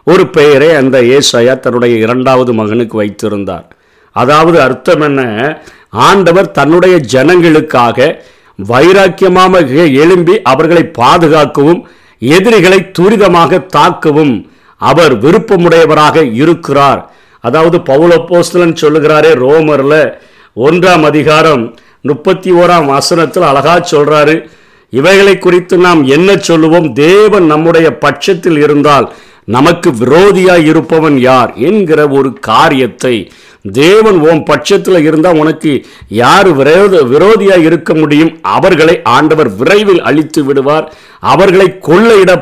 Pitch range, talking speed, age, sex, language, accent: 140-175 Hz, 95 wpm, 50-69, male, Tamil, native